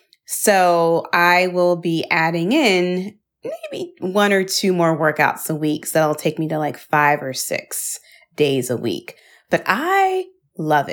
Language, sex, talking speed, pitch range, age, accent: English, female, 160 wpm, 160-225 Hz, 30-49, American